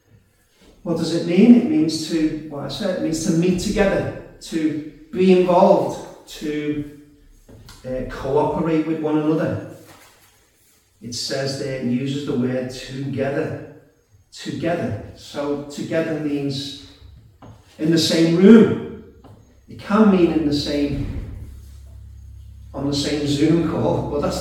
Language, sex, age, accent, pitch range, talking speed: English, male, 40-59, British, 130-165 Hz, 130 wpm